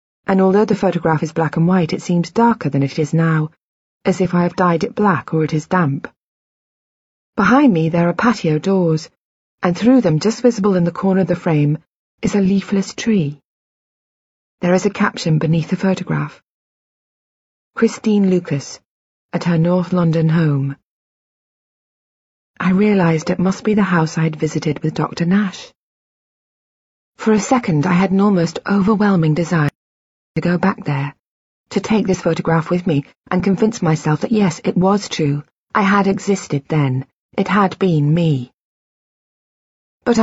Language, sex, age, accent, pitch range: Chinese, female, 30-49, British, 155-195 Hz